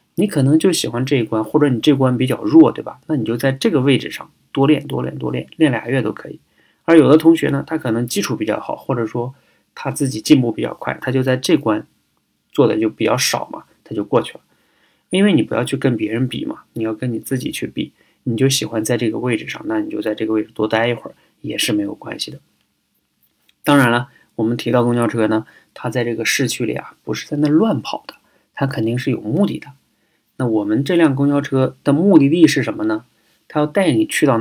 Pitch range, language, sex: 110-140 Hz, Chinese, male